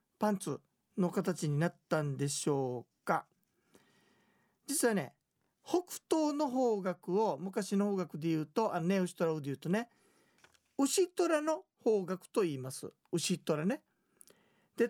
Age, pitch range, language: 40-59, 165-240 Hz, Japanese